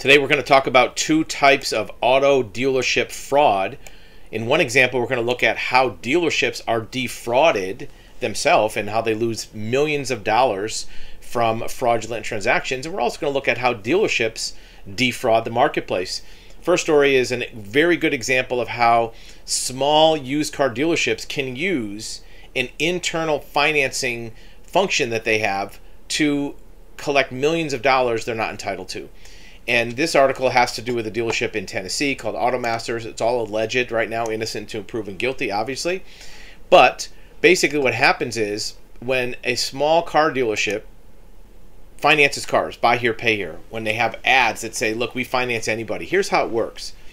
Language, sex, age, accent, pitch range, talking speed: English, male, 40-59, American, 115-145 Hz, 165 wpm